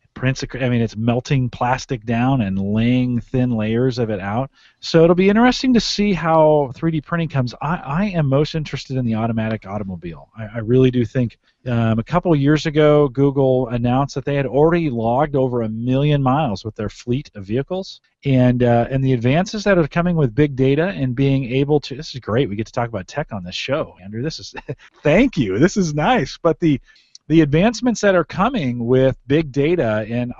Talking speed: 210 wpm